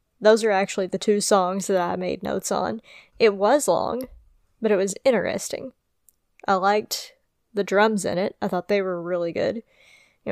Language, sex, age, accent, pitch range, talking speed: English, female, 20-39, American, 195-230 Hz, 180 wpm